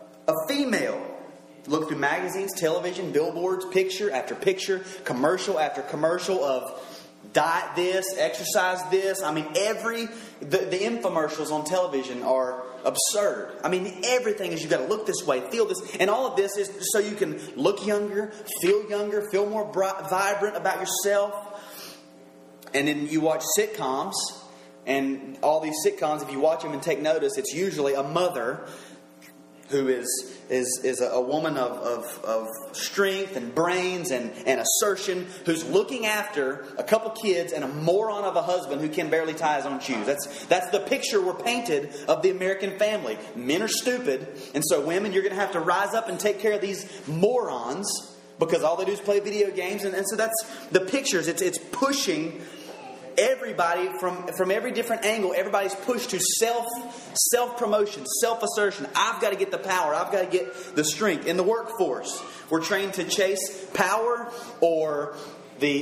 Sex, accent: male, American